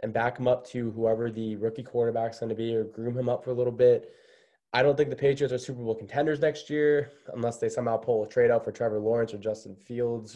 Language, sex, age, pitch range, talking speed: English, male, 20-39, 110-135 Hz, 255 wpm